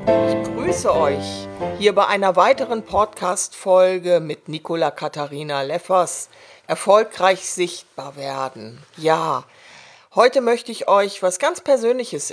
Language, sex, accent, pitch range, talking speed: German, female, German, 155-200 Hz, 110 wpm